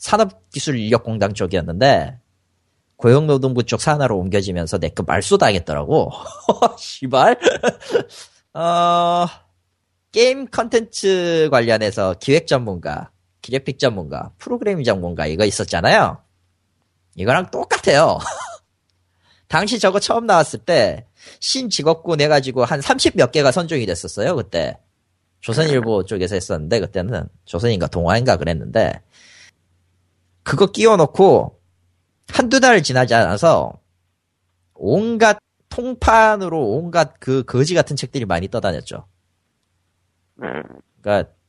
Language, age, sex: Korean, 30-49, male